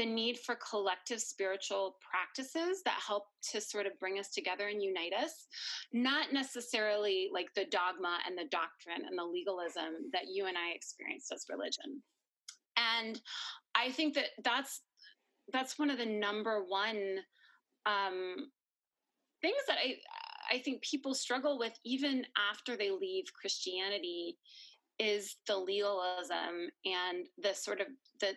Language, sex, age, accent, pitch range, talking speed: English, female, 30-49, American, 195-285 Hz, 145 wpm